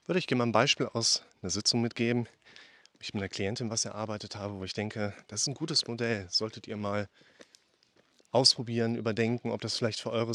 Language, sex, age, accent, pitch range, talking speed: German, male, 30-49, German, 105-120 Hz, 205 wpm